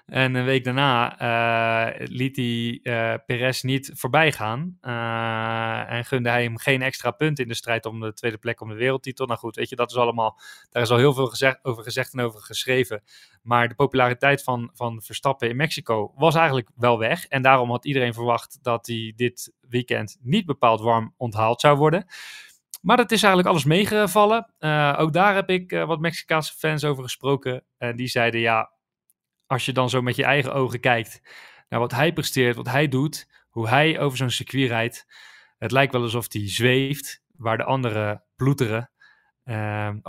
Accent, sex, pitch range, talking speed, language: Dutch, male, 115-140 Hz, 185 wpm, Dutch